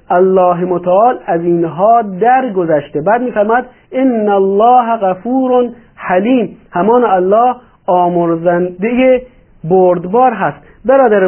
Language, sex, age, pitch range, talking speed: Persian, male, 50-69, 170-240 Hz, 90 wpm